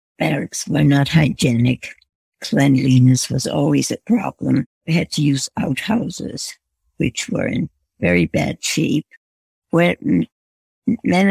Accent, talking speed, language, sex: American, 115 wpm, English, female